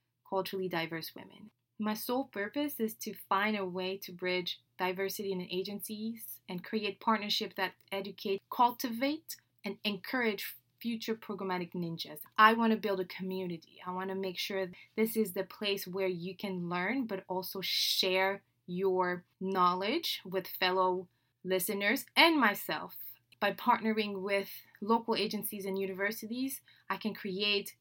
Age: 20-39